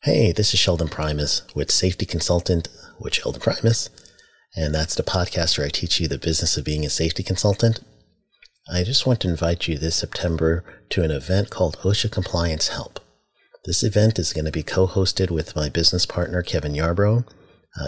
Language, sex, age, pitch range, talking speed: English, male, 40-59, 80-95 Hz, 180 wpm